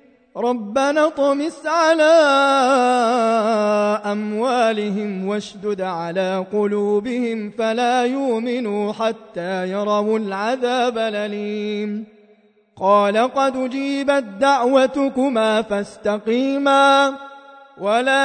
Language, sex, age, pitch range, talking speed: Arabic, male, 30-49, 220-275 Hz, 60 wpm